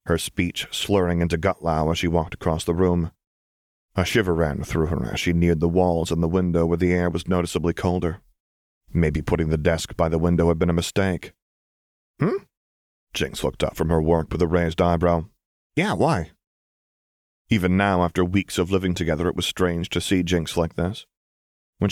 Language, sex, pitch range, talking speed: English, male, 85-95 Hz, 190 wpm